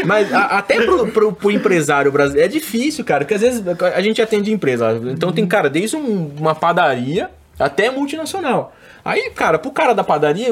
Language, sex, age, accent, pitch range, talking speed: Portuguese, male, 20-39, Brazilian, 150-235 Hz, 175 wpm